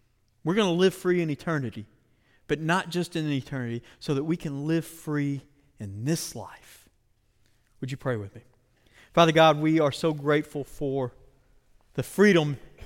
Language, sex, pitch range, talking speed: English, male, 120-155 Hz, 165 wpm